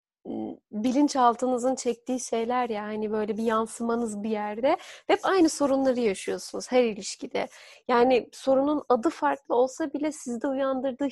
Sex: female